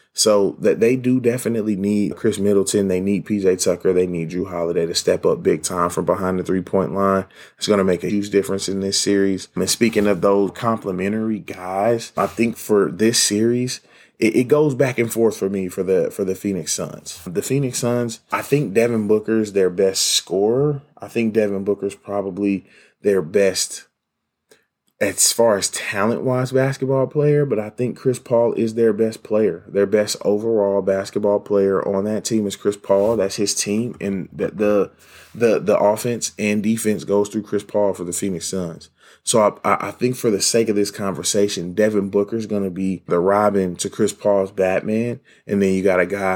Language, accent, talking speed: English, American, 200 wpm